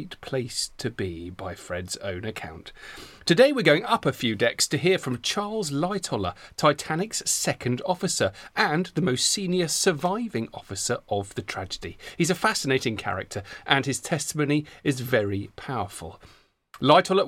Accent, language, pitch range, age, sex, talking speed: British, English, 115-150 Hz, 40-59, male, 145 wpm